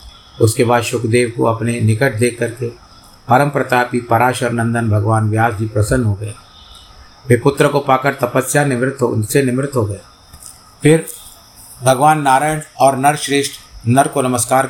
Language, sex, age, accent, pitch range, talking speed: Hindi, male, 50-69, native, 110-130 Hz, 150 wpm